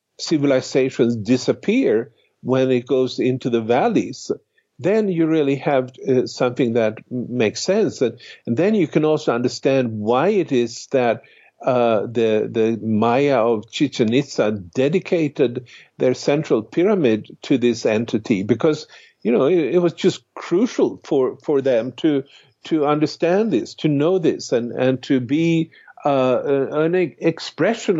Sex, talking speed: male, 145 wpm